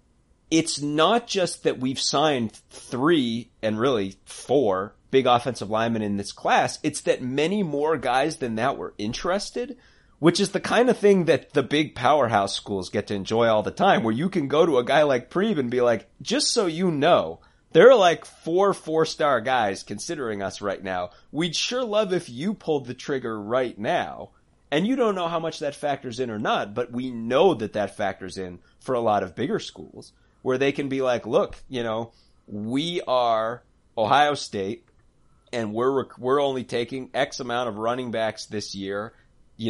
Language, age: English, 30-49